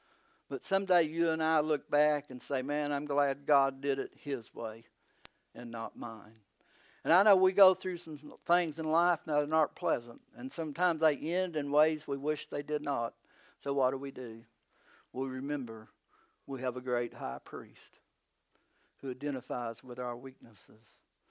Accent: American